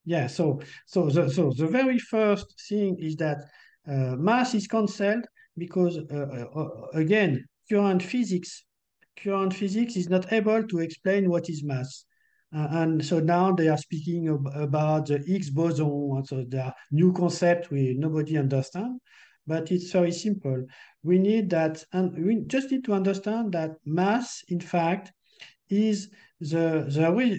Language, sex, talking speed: English, male, 155 wpm